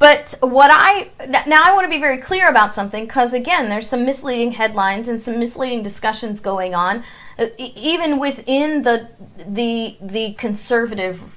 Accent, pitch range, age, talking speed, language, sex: American, 210-295 Hz, 40-59, 160 wpm, English, female